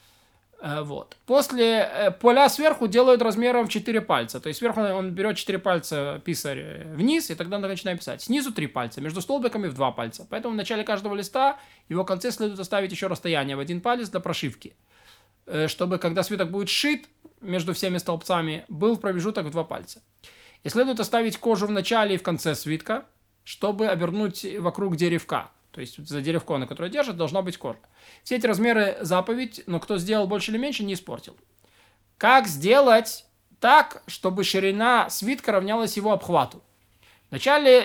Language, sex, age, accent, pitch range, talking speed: Russian, male, 20-39, native, 170-220 Hz, 170 wpm